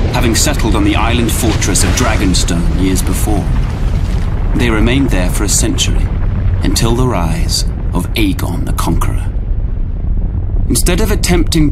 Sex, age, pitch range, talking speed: male, 30-49, 85-100 Hz, 135 wpm